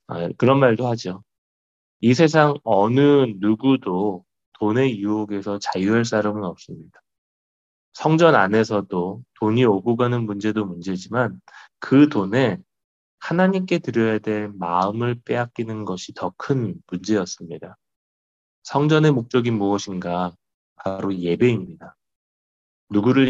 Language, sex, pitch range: Korean, male, 90-125 Hz